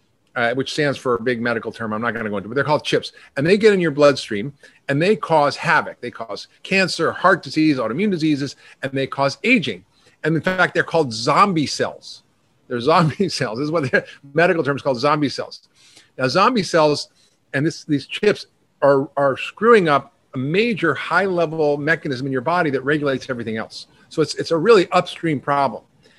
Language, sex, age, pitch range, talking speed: English, male, 40-59, 135-170 Hz, 200 wpm